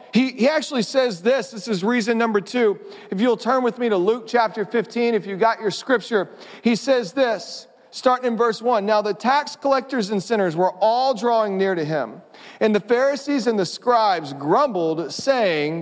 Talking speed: 190 wpm